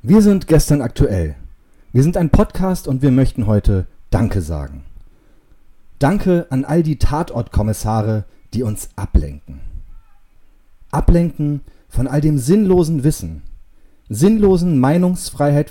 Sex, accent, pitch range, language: male, German, 95-150 Hz, German